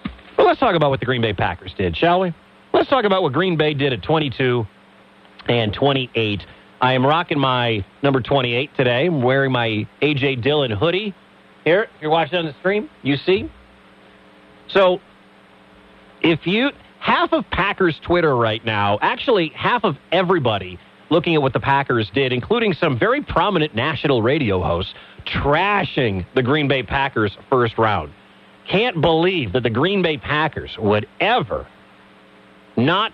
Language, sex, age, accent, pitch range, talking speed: English, male, 40-59, American, 115-175 Hz, 160 wpm